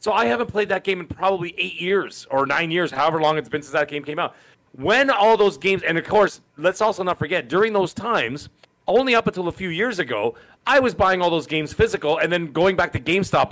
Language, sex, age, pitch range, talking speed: English, male, 40-59, 150-195 Hz, 250 wpm